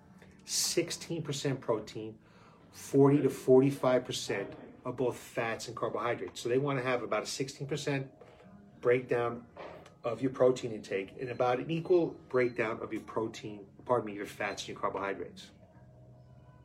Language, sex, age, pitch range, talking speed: English, male, 30-49, 110-145 Hz, 135 wpm